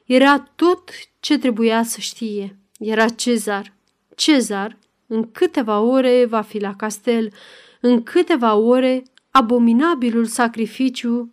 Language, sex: Romanian, female